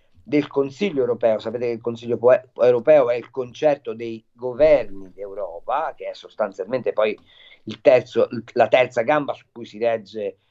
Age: 50-69